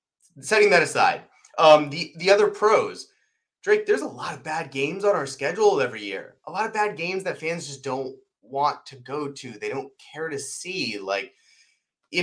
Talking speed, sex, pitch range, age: 195 wpm, male, 125-205 Hz, 30-49